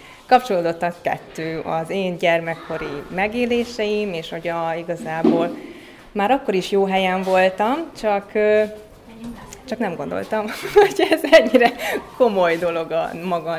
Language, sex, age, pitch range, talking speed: Hungarian, female, 20-39, 165-210 Hz, 115 wpm